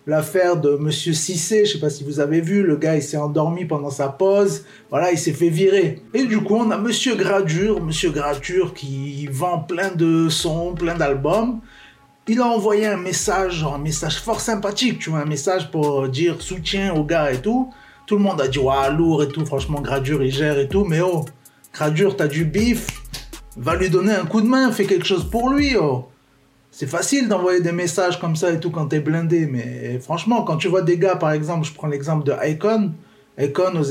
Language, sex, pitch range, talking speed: French, male, 150-195 Hz, 220 wpm